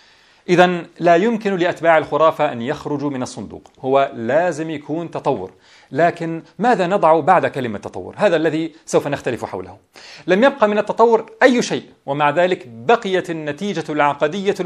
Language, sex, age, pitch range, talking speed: English, male, 40-59, 155-210 Hz, 145 wpm